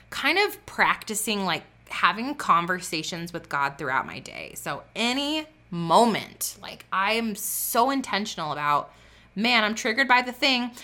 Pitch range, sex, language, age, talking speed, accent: 165-215 Hz, female, English, 20-39, 140 wpm, American